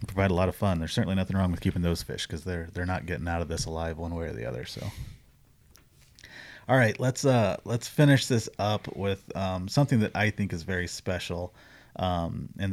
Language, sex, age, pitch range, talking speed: English, male, 30-49, 90-110 Hz, 220 wpm